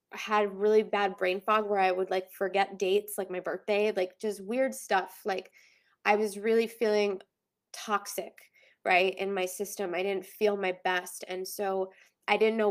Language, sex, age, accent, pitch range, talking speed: English, female, 20-39, American, 195-220 Hz, 180 wpm